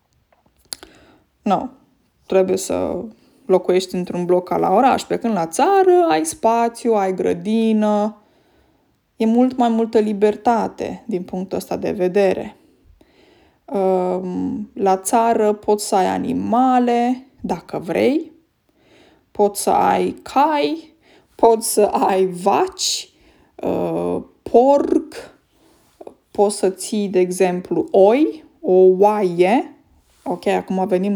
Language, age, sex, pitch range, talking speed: Romanian, 20-39, female, 190-285 Hz, 105 wpm